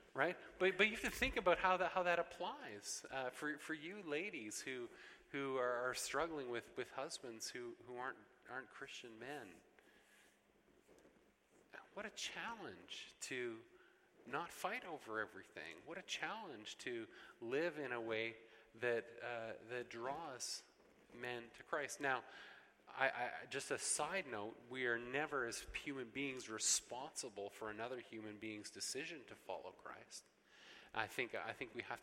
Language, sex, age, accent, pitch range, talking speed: English, male, 30-49, American, 115-170 Hz, 155 wpm